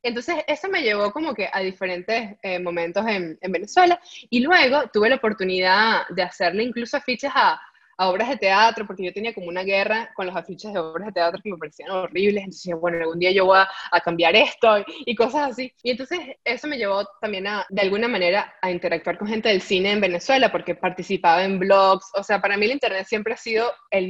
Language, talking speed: Spanish, 220 wpm